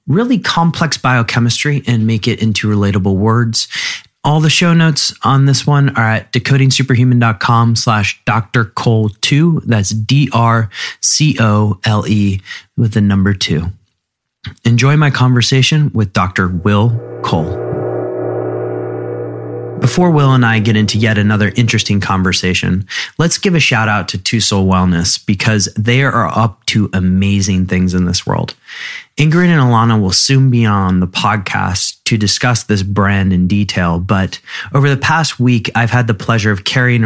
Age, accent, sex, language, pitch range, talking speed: 30-49, American, male, English, 100-125 Hz, 145 wpm